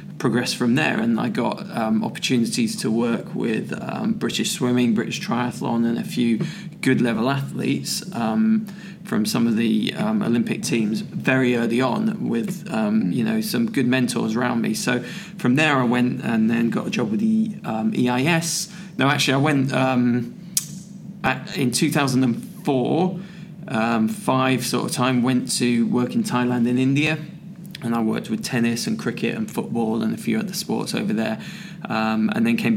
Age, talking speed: 20-39, 175 wpm